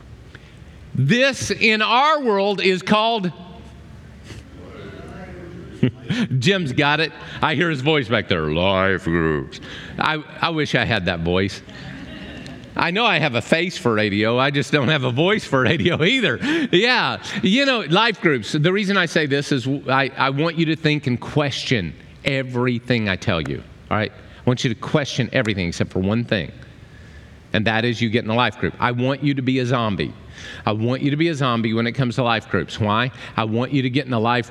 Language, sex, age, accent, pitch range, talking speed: English, male, 50-69, American, 110-160 Hz, 200 wpm